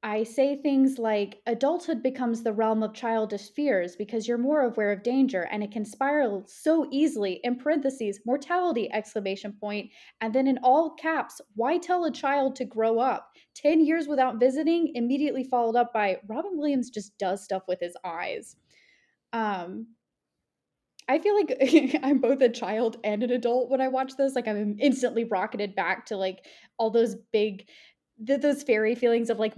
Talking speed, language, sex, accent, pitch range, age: 175 wpm, English, female, American, 205-260 Hz, 20-39